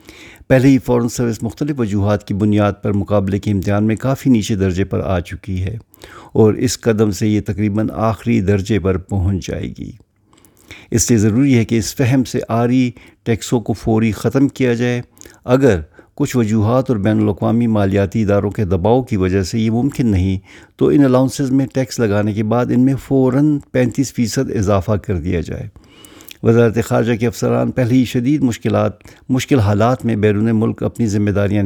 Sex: male